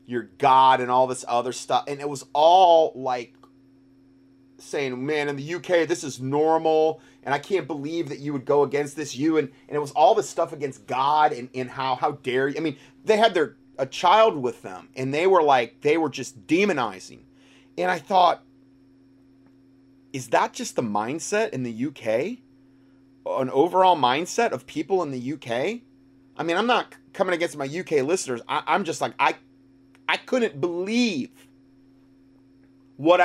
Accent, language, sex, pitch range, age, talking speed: American, English, male, 135-160 Hz, 30-49, 180 wpm